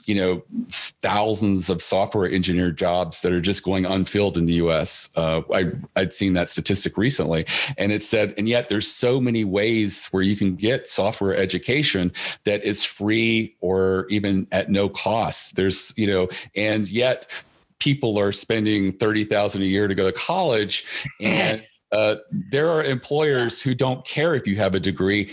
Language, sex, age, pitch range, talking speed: English, male, 40-59, 95-110 Hz, 175 wpm